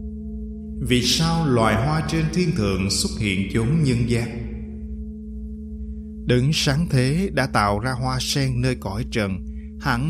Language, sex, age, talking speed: Vietnamese, male, 20-39, 145 wpm